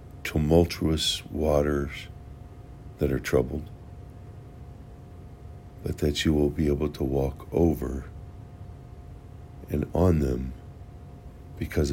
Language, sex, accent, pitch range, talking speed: English, male, American, 75-95 Hz, 90 wpm